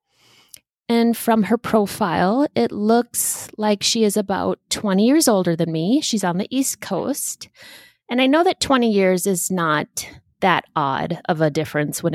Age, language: 20-39, English